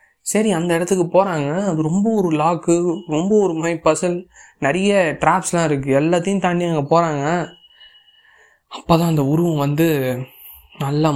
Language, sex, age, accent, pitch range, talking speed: Tamil, male, 20-39, native, 140-170 Hz, 130 wpm